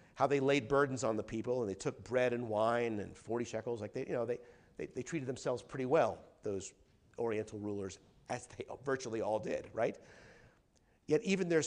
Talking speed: 200 wpm